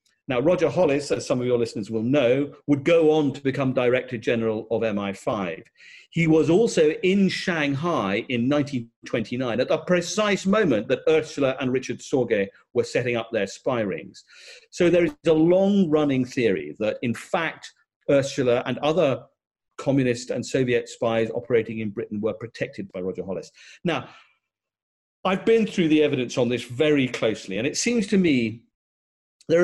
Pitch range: 125-190 Hz